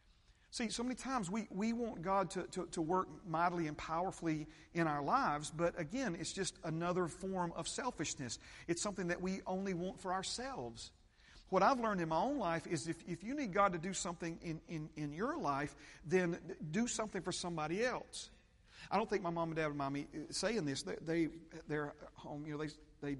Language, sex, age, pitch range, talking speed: English, male, 40-59, 140-175 Hz, 215 wpm